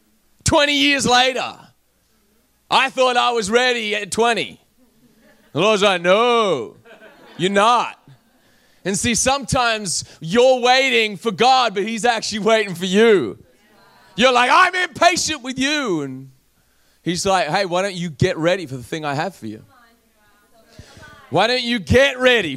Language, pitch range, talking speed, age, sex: English, 165-230 Hz, 150 wpm, 30-49, male